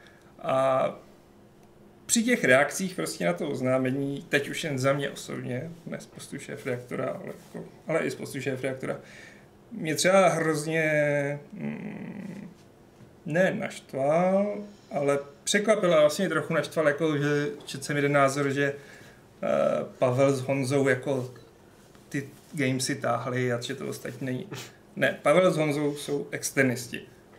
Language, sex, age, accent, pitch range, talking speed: Czech, male, 30-49, native, 130-150 Hz, 130 wpm